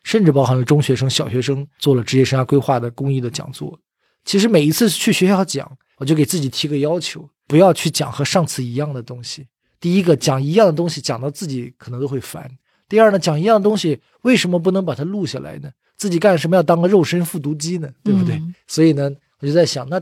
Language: Chinese